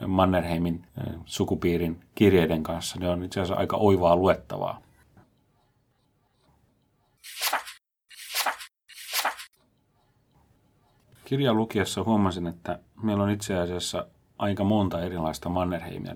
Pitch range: 85-100 Hz